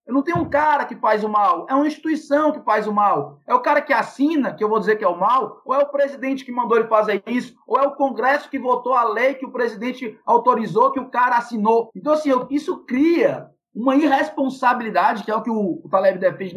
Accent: Brazilian